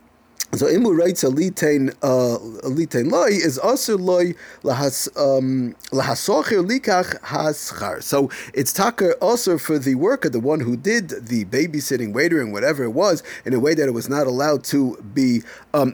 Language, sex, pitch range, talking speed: English, male, 130-180 Hz, 145 wpm